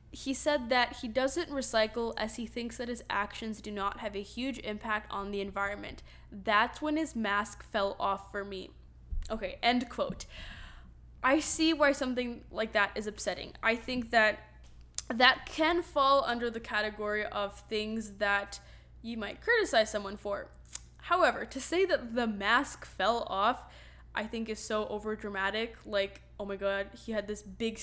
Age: 10-29